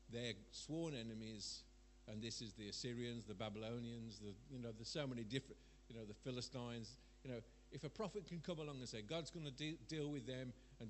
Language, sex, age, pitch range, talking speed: English, male, 50-69, 110-145 Hz, 215 wpm